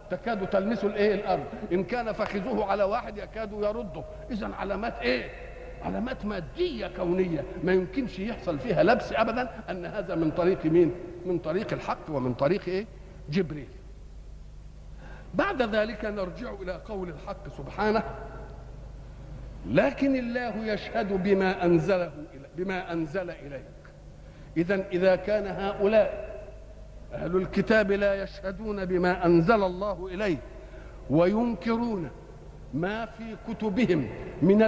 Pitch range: 170-215 Hz